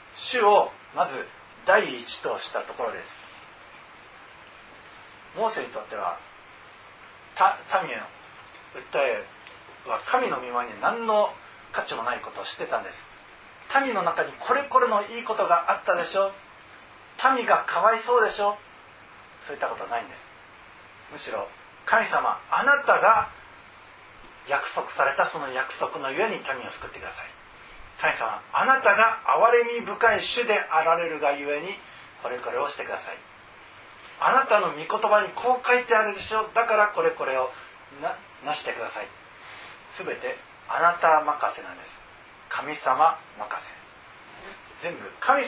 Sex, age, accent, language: male, 40-59, native, Japanese